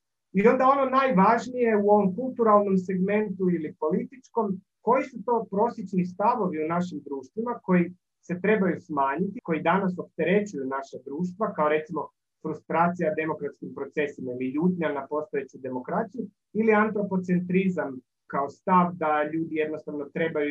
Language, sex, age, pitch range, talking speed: English, male, 30-49, 140-205 Hz, 130 wpm